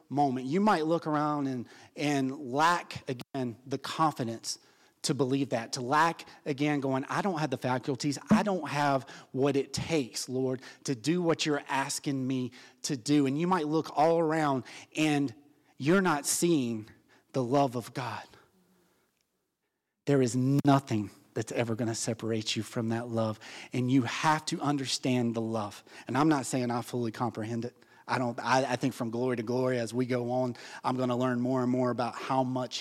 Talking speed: 185 wpm